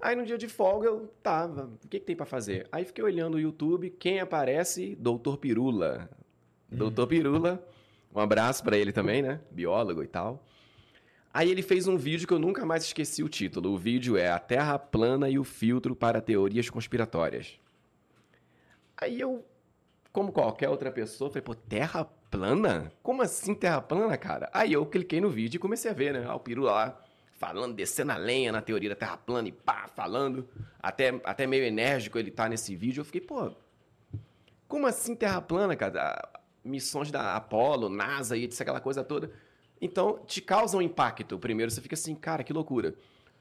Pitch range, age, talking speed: 115-175 Hz, 30-49, 190 wpm